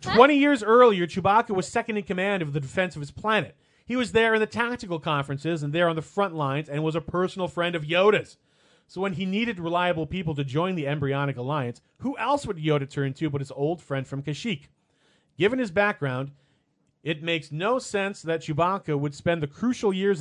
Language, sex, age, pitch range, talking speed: English, male, 40-59, 145-190 Hz, 210 wpm